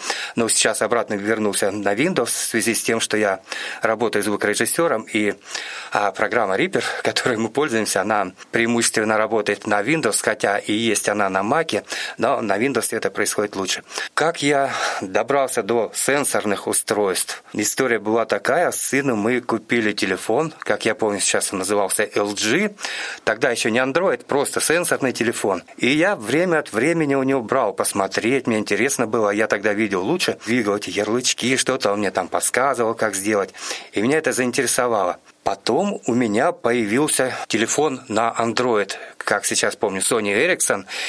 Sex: male